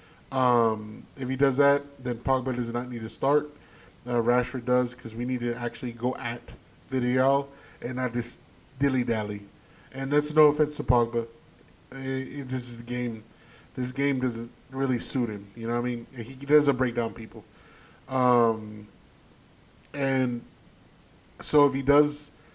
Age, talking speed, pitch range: 20-39, 165 wpm, 120-135 Hz